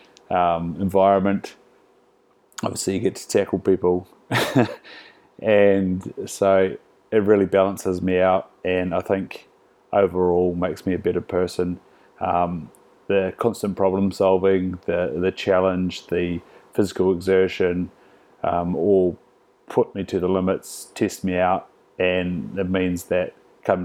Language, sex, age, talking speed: English, male, 30-49, 125 wpm